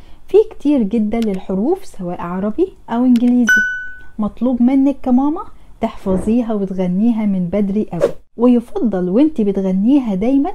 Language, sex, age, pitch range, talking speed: Arabic, female, 10-29, 195-260 Hz, 115 wpm